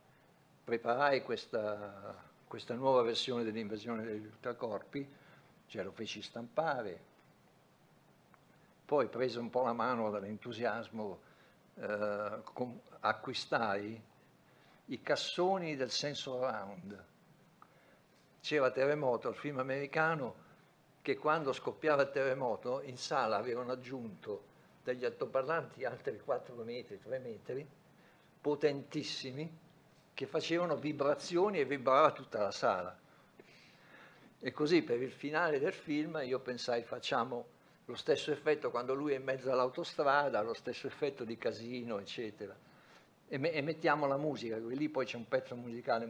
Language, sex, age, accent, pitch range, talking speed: Italian, male, 60-79, native, 115-145 Hz, 120 wpm